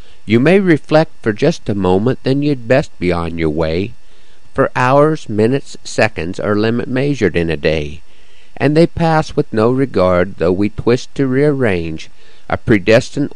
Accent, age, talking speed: American, 50-69, 165 wpm